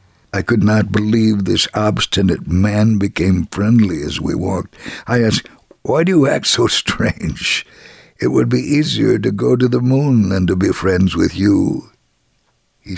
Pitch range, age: 95-120 Hz, 60-79